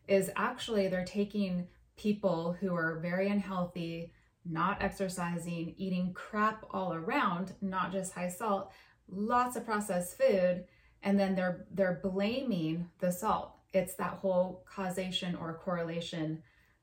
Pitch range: 170-200 Hz